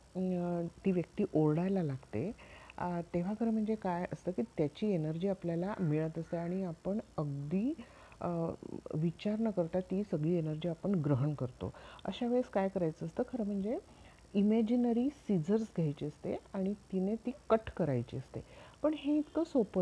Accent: native